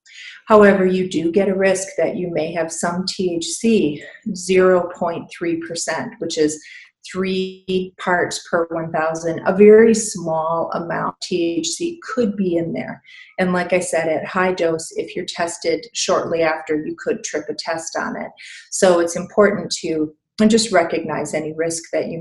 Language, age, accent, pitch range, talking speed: English, 40-59, American, 165-205 Hz, 155 wpm